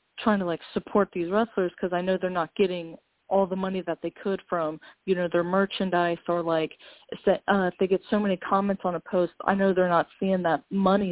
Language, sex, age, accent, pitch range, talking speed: English, female, 30-49, American, 170-200 Hz, 225 wpm